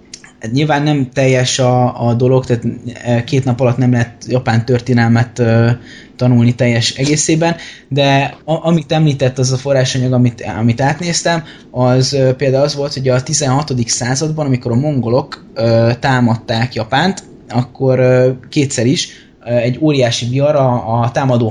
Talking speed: 135 wpm